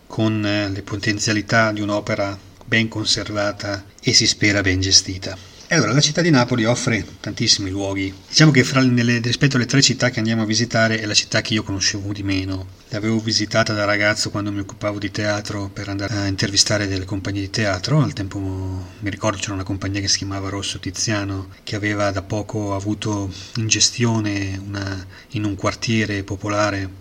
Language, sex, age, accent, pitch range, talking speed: Italian, male, 30-49, native, 100-110 Hz, 175 wpm